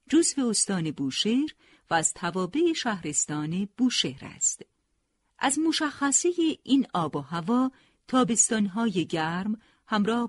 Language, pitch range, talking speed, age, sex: Persian, 180-260 Hz, 105 wpm, 50-69, female